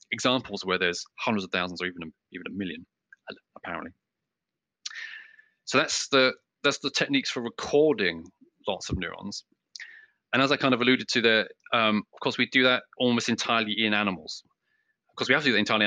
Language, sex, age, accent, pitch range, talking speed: English, male, 20-39, British, 100-130 Hz, 185 wpm